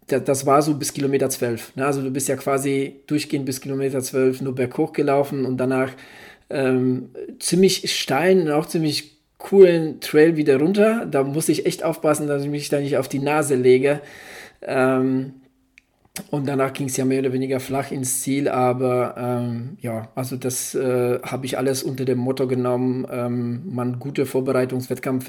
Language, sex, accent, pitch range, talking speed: German, male, German, 130-150 Hz, 180 wpm